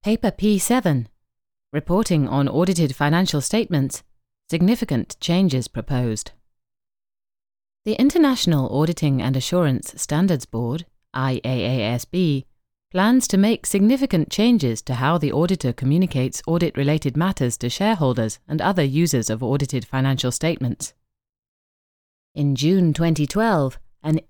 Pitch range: 125-175 Hz